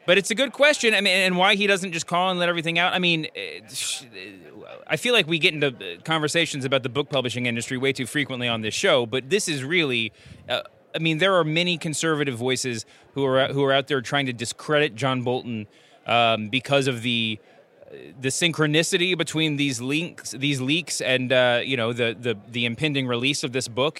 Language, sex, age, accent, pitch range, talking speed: English, male, 30-49, American, 125-160 Hz, 215 wpm